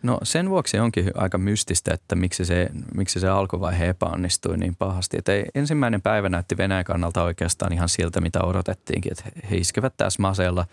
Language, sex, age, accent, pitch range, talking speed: Finnish, male, 20-39, native, 90-105 Hz, 170 wpm